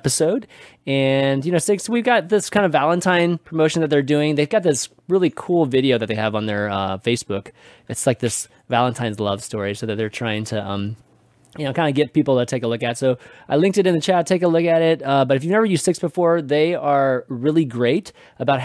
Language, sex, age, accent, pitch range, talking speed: English, male, 20-39, American, 120-160 Hz, 245 wpm